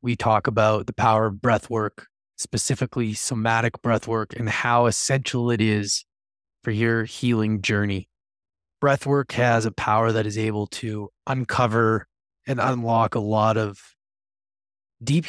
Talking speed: 135 wpm